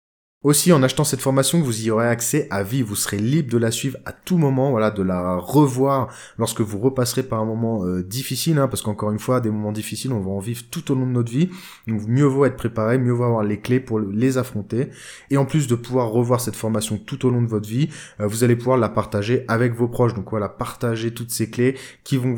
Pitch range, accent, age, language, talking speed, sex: 110-130 Hz, French, 20-39, French, 250 wpm, male